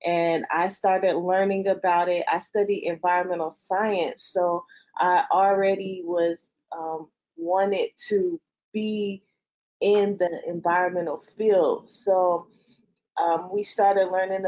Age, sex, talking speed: 20-39, female, 110 wpm